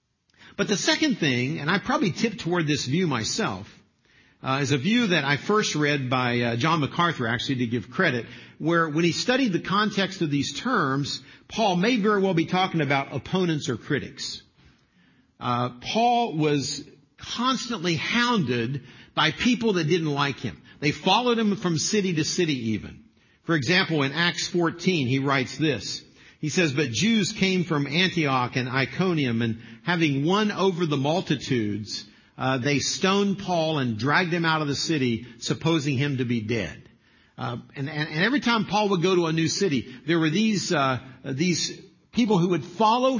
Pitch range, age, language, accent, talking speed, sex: 135-185 Hz, 50-69, English, American, 175 wpm, male